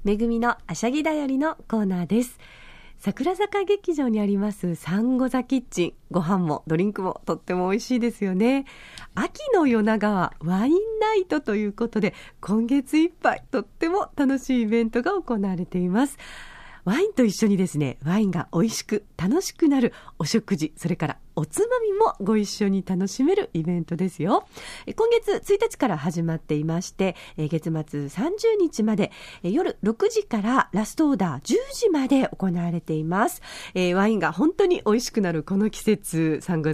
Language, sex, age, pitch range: Japanese, female, 40-59, 180-295 Hz